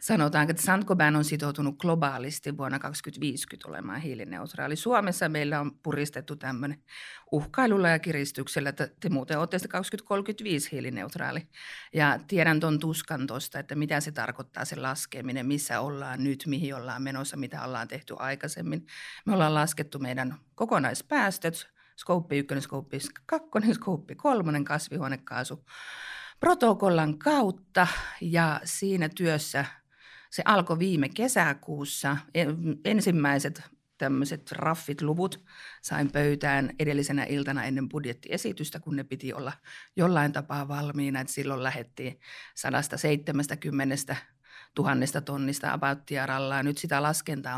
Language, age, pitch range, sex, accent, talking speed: Finnish, 50-69, 135-165 Hz, female, native, 115 wpm